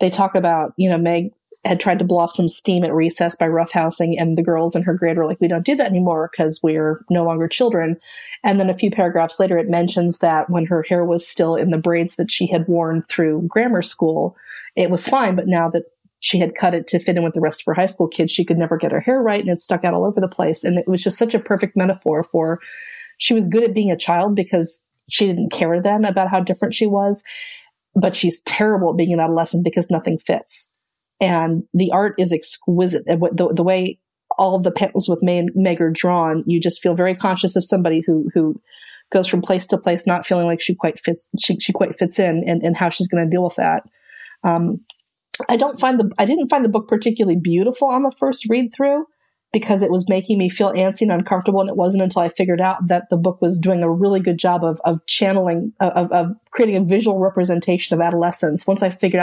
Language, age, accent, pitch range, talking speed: English, 30-49, American, 170-195 Hz, 240 wpm